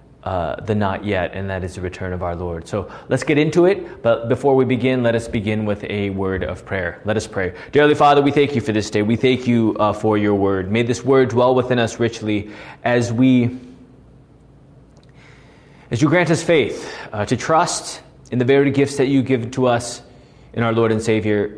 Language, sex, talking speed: English, male, 215 wpm